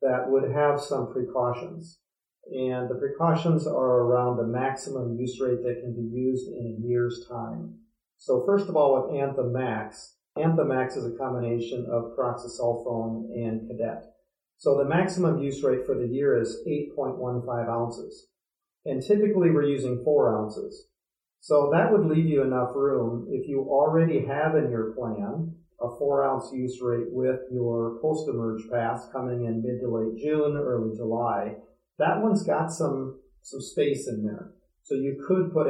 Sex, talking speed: male, 160 wpm